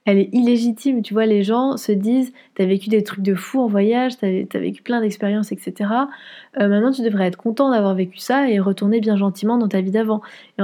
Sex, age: female, 20-39